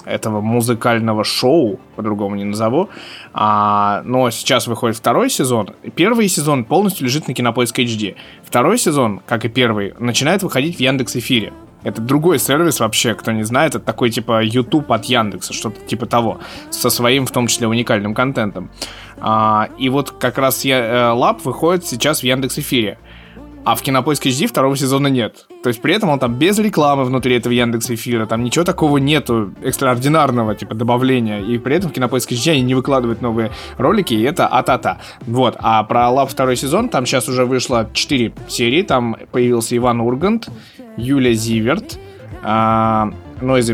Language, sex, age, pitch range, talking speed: Russian, male, 20-39, 115-135 Hz, 175 wpm